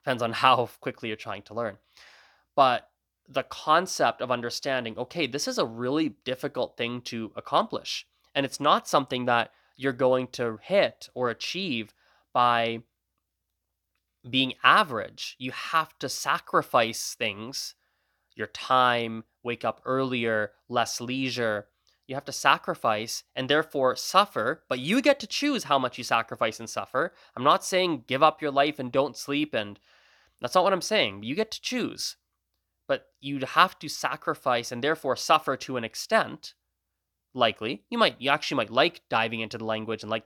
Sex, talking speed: male, 165 wpm